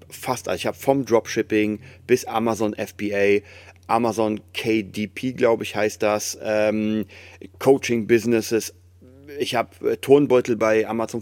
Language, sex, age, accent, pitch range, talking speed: German, male, 30-49, German, 90-115 Hz, 125 wpm